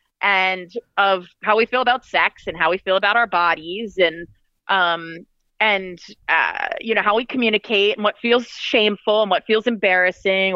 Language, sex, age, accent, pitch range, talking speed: English, female, 30-49, American, 190-230 Hz, 175 wpm